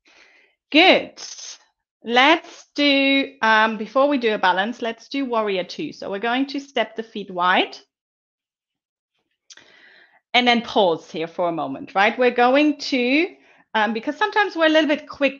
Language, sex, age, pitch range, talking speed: English, female, 30-49, 205-260 Hz, 155 wpm